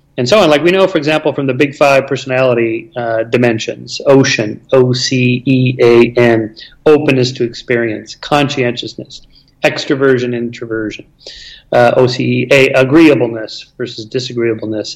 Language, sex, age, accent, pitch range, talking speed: English, male, 40-59, American, 125-145 Hz, 140 wpm